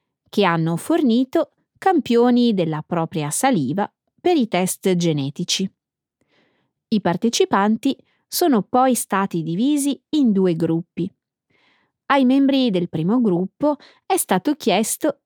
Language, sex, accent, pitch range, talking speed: Italian, female, native, 175-260 Hz, 110 wpm